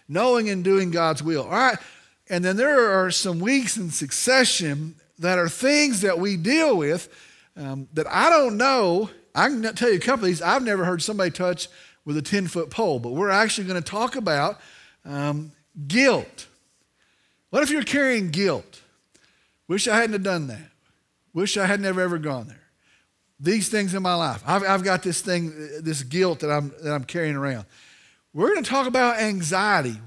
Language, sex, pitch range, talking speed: English, male, 160-245 Hz, 190 wpm